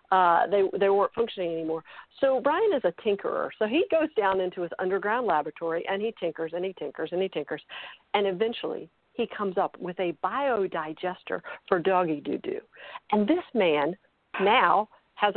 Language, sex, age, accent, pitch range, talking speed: English, female, 50-69, American, 180-250 Hz, 170 wpm